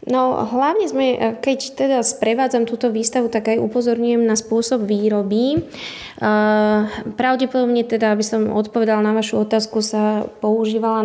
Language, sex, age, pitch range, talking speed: Slovak, female, 20-39, 210-245 Hz, 130 wpm